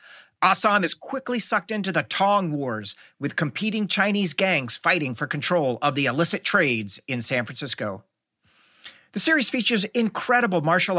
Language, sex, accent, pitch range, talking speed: English, male, American, 150-205 Hz, 145 wpm